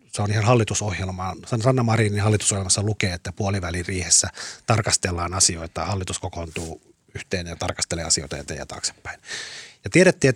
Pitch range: 95-120 Hz